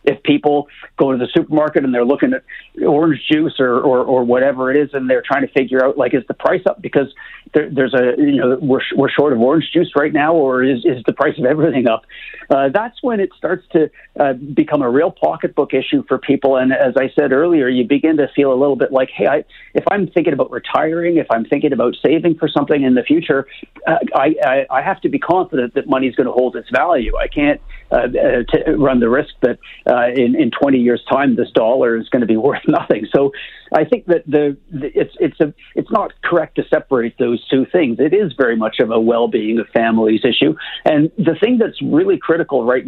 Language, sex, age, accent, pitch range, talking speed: English, male, 40-59, American, 125-160 Hz, 235 wpm